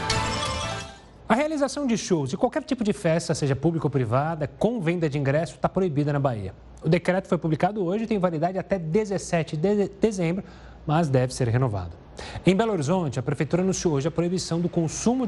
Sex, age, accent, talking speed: male, 30-49, Brazilian, 190 wpm